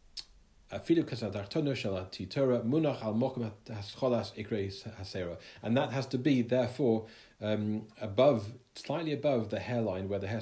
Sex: male